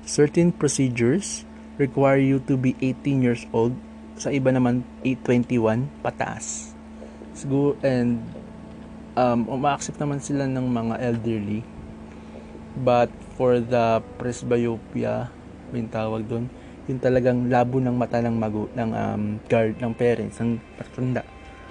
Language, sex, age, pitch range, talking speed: Filipino, male, 20-39, 110-135 Hz, 115 wpm